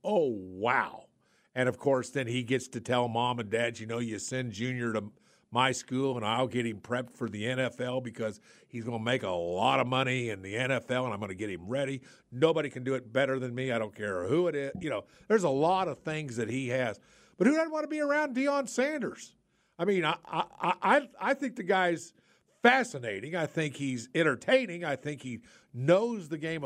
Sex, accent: male, American